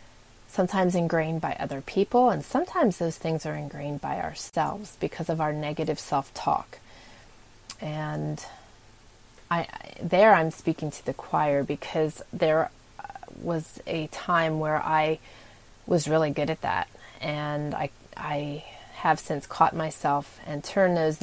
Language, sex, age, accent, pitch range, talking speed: English, female, 30-49, American, 145-170 Hz, 140 wpm